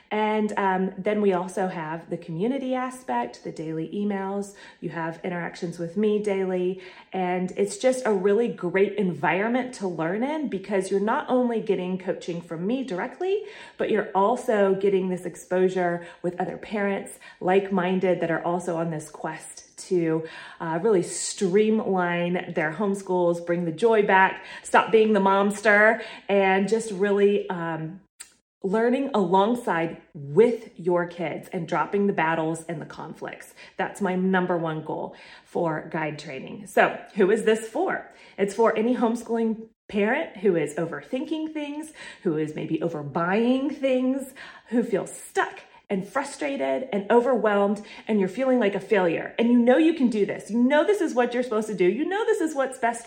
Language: English